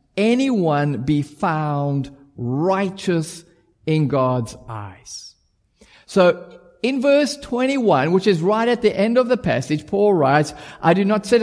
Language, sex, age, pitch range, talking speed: English, male, 50-69, 145-210 Hz, 135 wpm